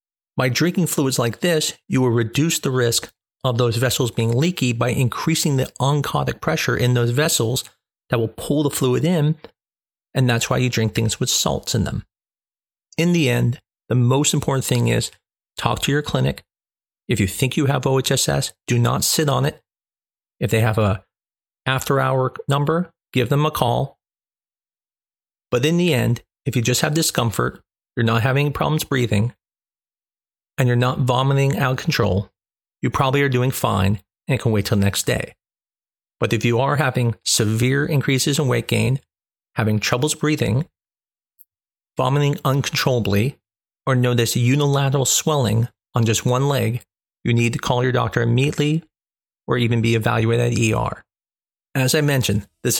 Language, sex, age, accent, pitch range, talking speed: English, male, 40-59, American, 115-140 Hz, 165 wpm